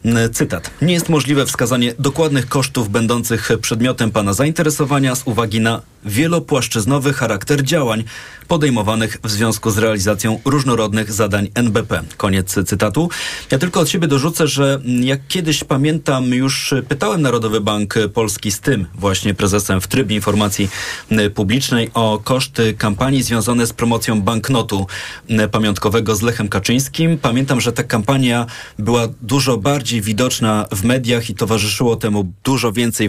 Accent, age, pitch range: native, 30-49, 105-135 Hz